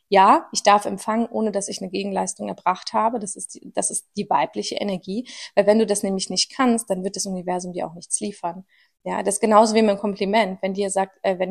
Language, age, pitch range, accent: German, 30-49, 195-235 Hz, German